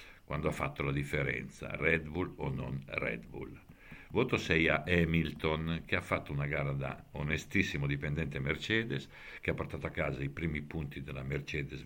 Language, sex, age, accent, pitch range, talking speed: Italian, male, 60-79, native, 70-95 Hz, 170 wpm